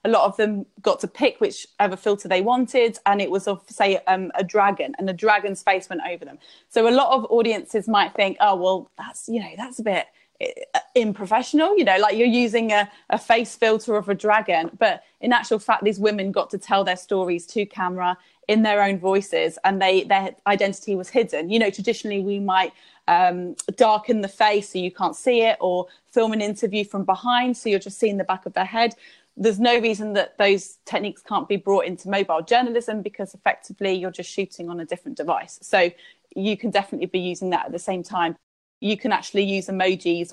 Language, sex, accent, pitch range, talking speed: English, female, British, 185-225 Hz, 215 wpm